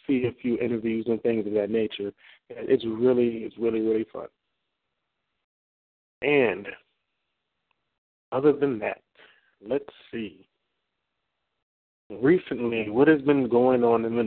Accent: American